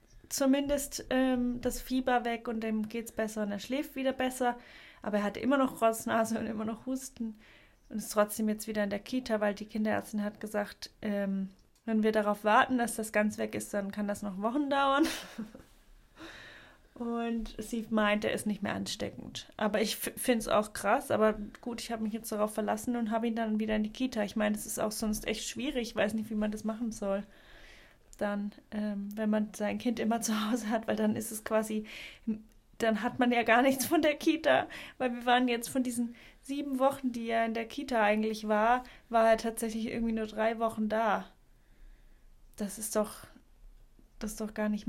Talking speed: 210 wpm